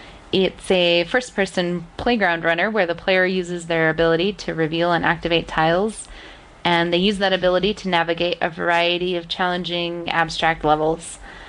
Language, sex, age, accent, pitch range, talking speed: English, female, 20-39, American, 165-190 Hz, 150 wpm